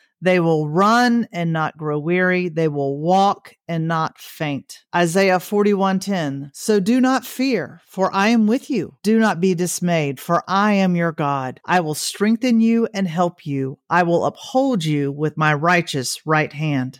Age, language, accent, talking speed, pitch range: 40-59, English, American, 175 wpm, 155-195 Hz